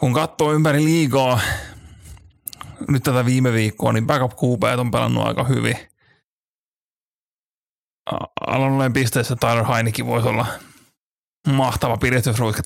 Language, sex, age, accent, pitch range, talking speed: Finnish, male, 30-49, native, 115-135 Hz, 105 wpm